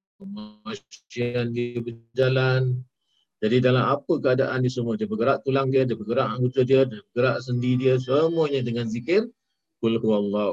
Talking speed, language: 155 wpm, Malay